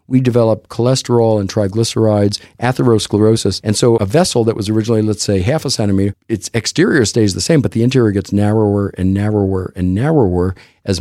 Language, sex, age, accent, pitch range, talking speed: English, male, 50-69, American, 95-115 Hz, 180 wpm